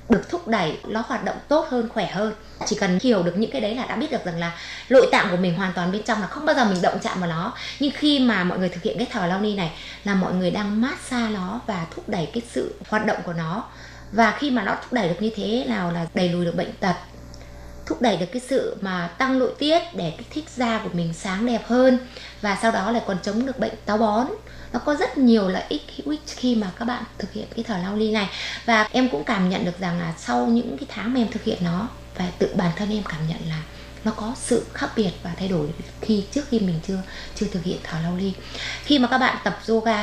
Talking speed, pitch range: 265 wpm, 180-230 Hz